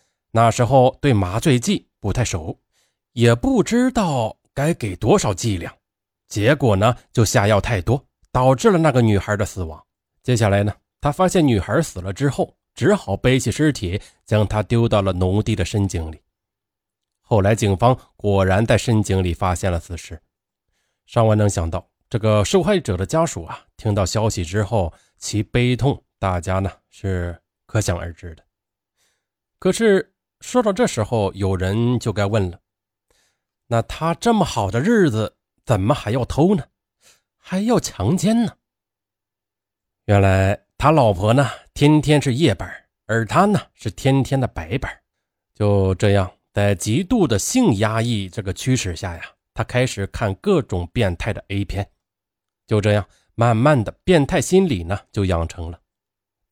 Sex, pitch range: male, 95-130 Hz